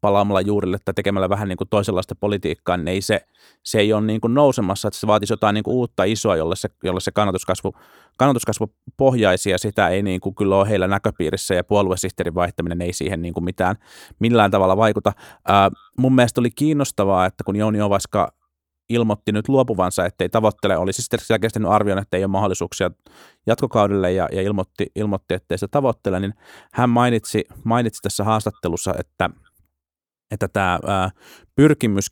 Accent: native